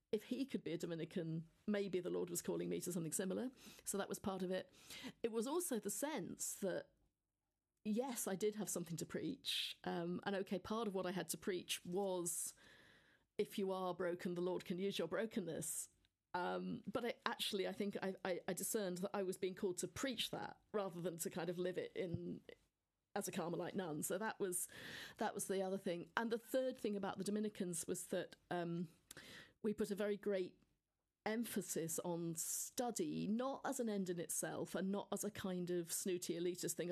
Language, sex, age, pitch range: English, female, 40-59, 180-210 Hz